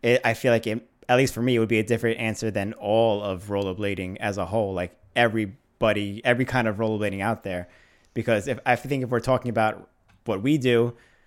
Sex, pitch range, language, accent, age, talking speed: male, 110-130 Hz, English, American, 20-39, 215 wpm